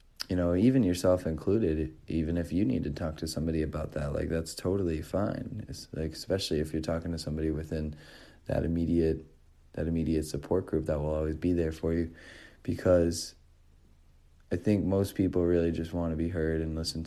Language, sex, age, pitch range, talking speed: English, male, 30-49, 80-105 Hz, 190 wpm